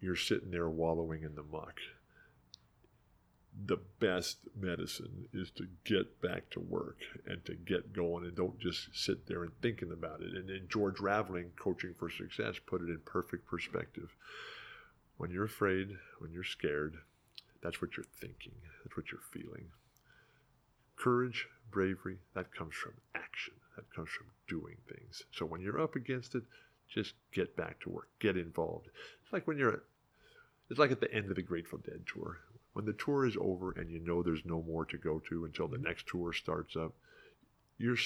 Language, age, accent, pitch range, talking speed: English, 50-69, American, 85-105 Hz, 180 wpm